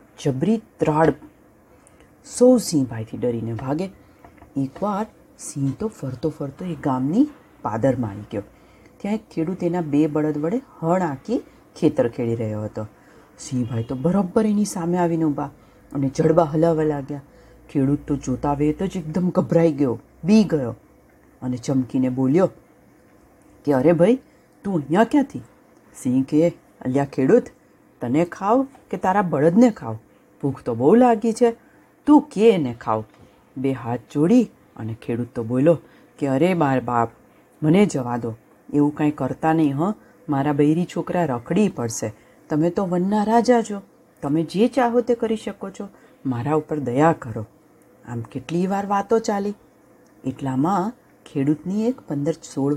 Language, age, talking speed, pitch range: Gujarati, 40-59, 130 wpm, 135-200 Hz